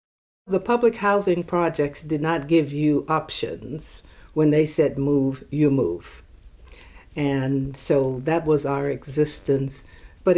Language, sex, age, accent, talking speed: English, female, 60-79, American, 125 wpm